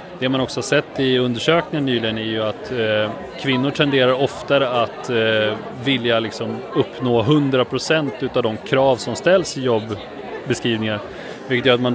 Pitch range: 110-130 Hz